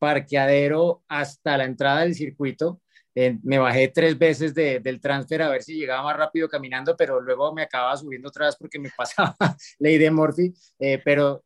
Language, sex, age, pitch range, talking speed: Spanish, male, 30-49, 135-165 Hz, 175 wpm